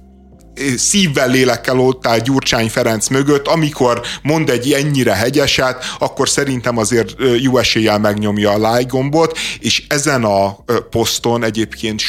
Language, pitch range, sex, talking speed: Hungarian, 115-140 Hz, male, 125 wpm